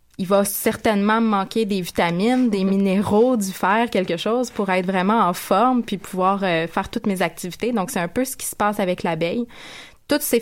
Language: French